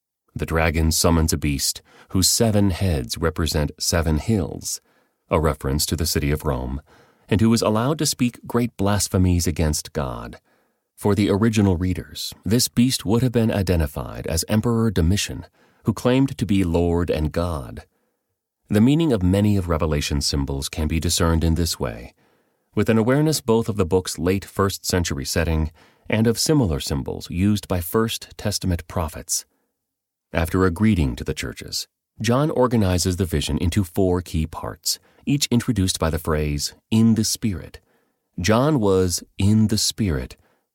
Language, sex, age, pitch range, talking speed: English, male, 30-49, 80-105 Hz, 160 wpm